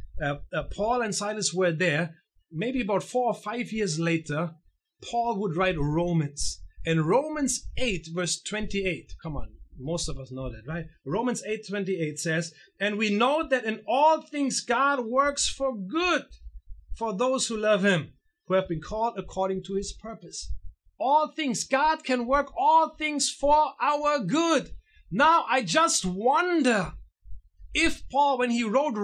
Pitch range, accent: 190-285 Hz, German